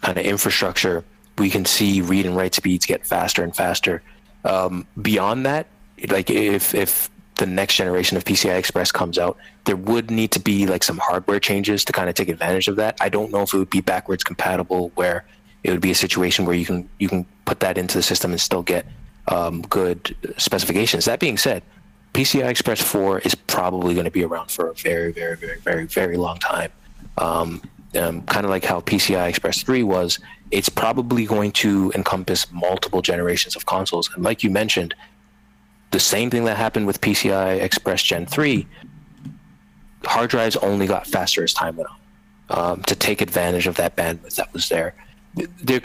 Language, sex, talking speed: English, male, 200 wpm